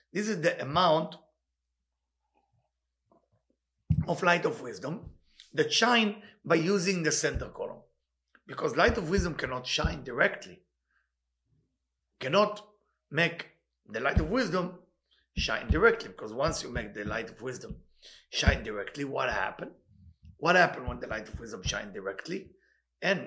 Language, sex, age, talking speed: English, male, 50-69, 135 wpm